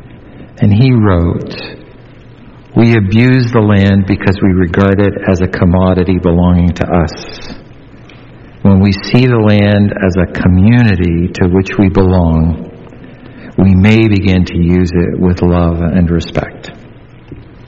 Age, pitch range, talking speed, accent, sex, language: 50-69, 90-110 Hz, 130 wpm, American, male, English